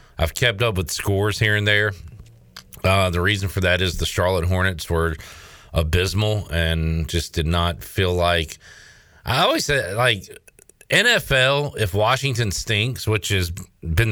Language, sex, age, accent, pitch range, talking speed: English, male, 40-59, American, 90-115 Hz, 155 wpm